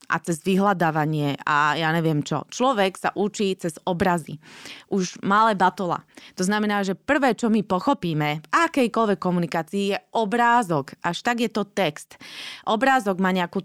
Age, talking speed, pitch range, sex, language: 20-39, 155 wpm, 175-220 Hz, female, Slovak